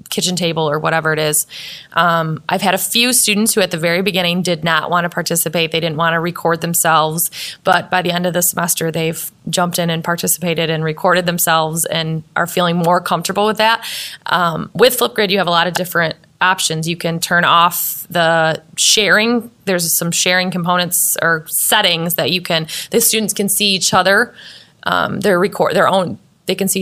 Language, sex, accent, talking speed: English, female, American, 195 wpm